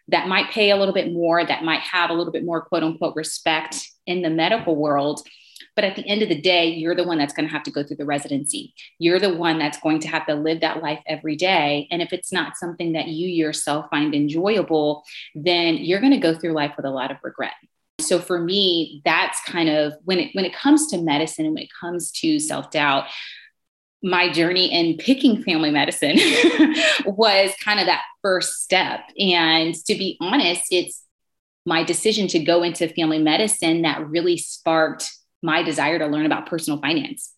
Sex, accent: female, American